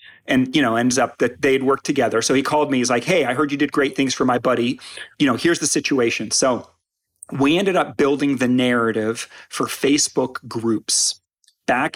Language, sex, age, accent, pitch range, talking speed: English, male, 40-59, American, 125-165 Hz, 205 wpm